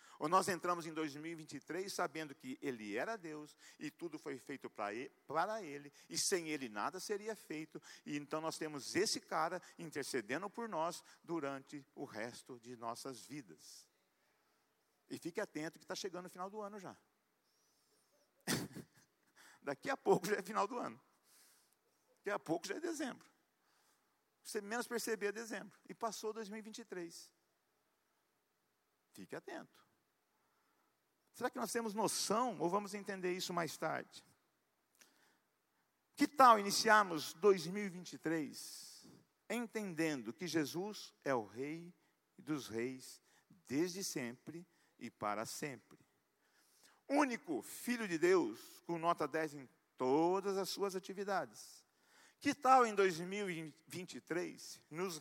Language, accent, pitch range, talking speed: Portuguese, Brazilian, 155-220 Hz, 125 wpm